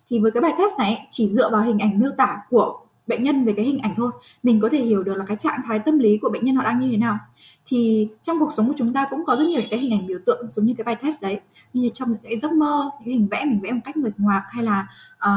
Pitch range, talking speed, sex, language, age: 215-275 Hz, 320 wpm, female, Vietnamese, 10-29